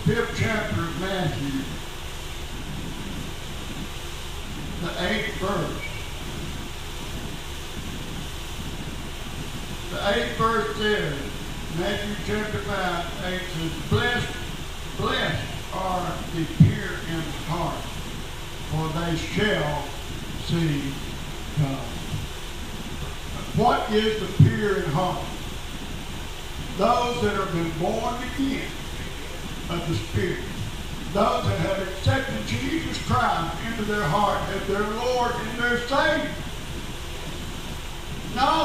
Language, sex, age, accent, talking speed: English, male, 50-69, American, 95 wpm